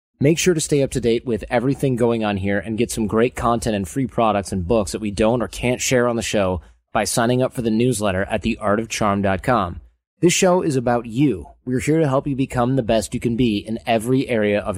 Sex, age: male, 20-39